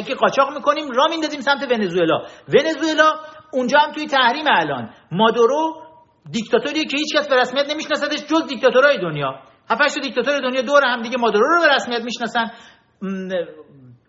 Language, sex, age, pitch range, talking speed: Persian, male, 50-69, 215-290 Hz, 160 wpm